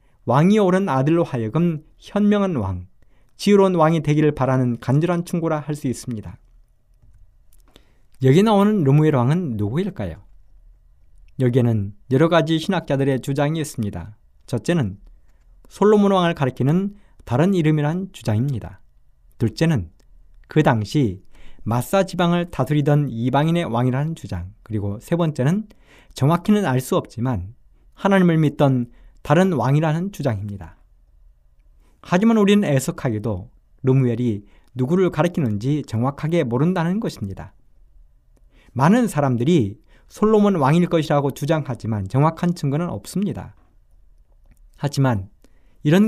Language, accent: Korean, native